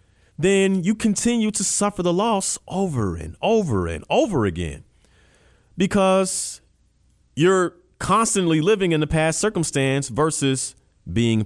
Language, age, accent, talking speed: English, 40-59, American, 120 wpm